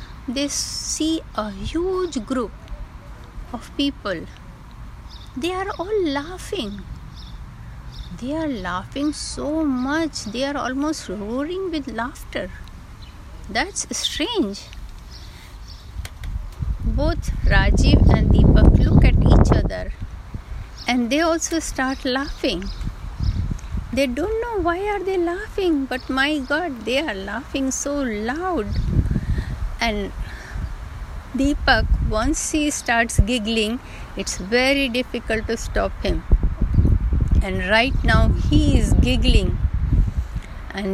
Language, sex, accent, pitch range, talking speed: Hindi, female, native, 205-300 Hz, 105 wpm